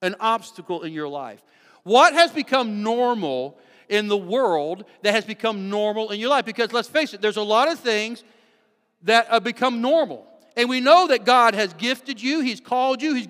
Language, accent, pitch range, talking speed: English, American, 225-290 Hz, 200 wpm